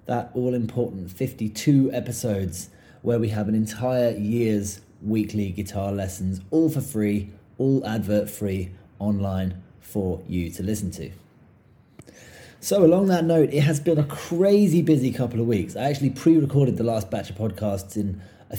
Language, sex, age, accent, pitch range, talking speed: English, male, 30-49, British, 105-125 Hz, 150 wpm